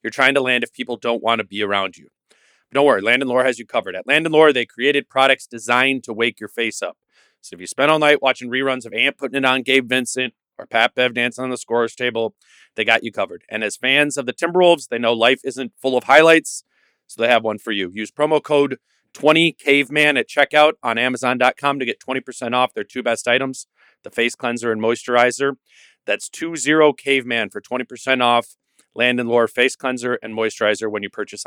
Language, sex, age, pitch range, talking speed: English, male, 30-49, 120-140 Hz, 220 wpm